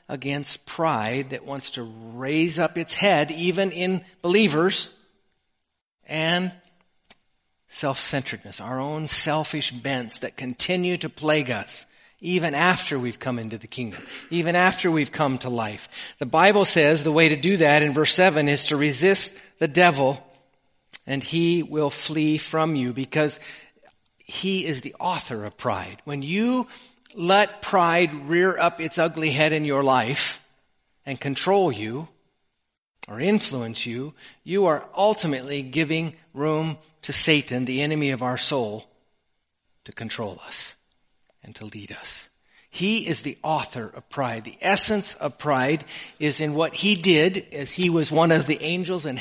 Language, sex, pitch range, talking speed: English, male, 135-175 Hz, 150 wpm